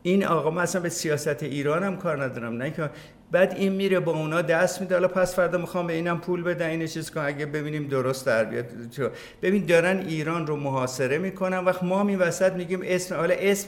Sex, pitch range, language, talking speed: male, 140-180 Hz, Persian, 200 wpm